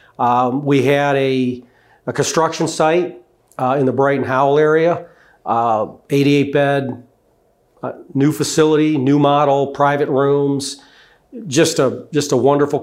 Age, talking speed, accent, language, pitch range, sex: 40-59, 130 wpm, American, English, 125-145 Hz, male